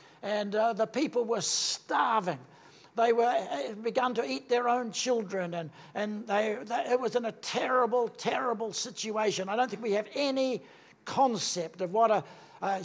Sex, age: male, 60-79